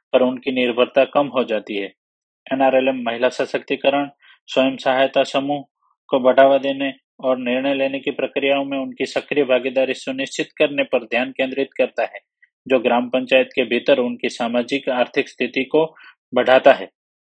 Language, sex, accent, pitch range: Hindi, male, native, 130-145 Hz